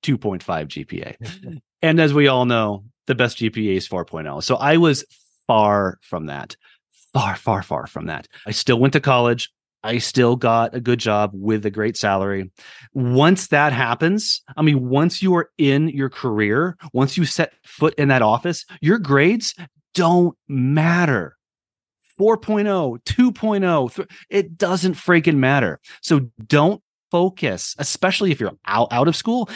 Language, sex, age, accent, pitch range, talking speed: English, male, 30-49, American, 115-170 Hz, 150 wpm